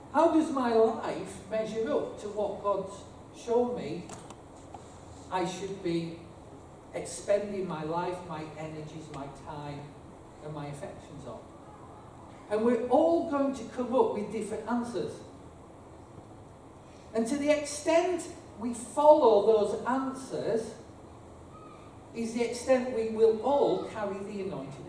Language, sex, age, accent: English, male, 40-59, British